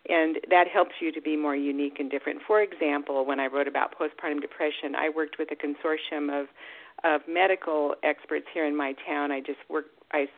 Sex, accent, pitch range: female, American, 145-170 Hz